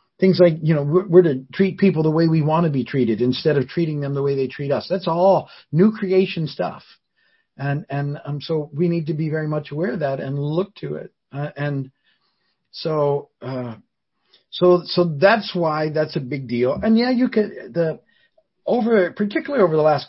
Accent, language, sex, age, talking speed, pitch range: American, English, male, 50-69, 205 wpm, 120-165 Hz